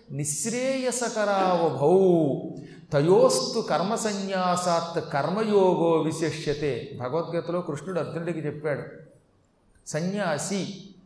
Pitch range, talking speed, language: 165-230 Hz, 55 wpm, Telugu